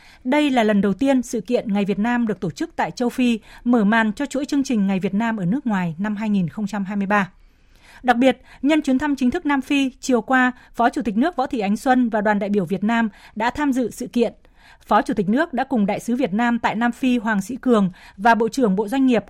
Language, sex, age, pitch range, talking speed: Vietnamese, female, 20-39, 215-260 Hz, 255 wpm